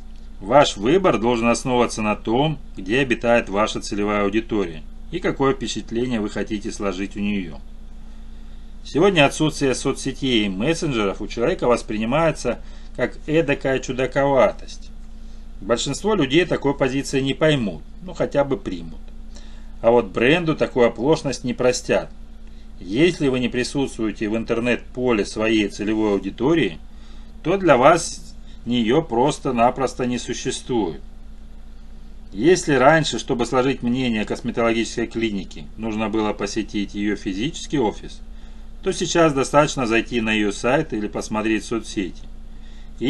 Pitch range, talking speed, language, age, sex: 105-135 Hz, 120 wpm, Russian, 30-49, male